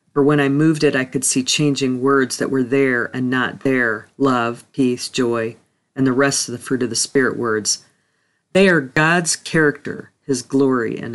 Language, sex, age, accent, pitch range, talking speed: English, female, 40-59, American, 125-150 Hz, 195 wpm